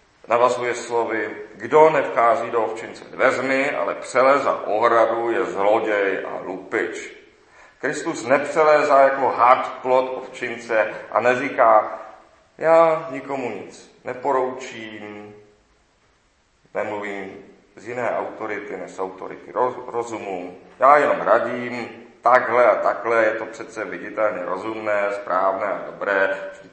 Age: 40-59